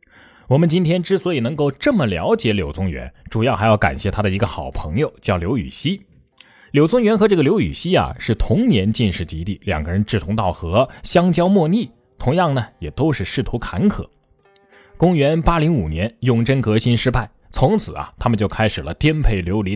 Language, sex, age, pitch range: Chinese, male, 20-39, 100-150 Hz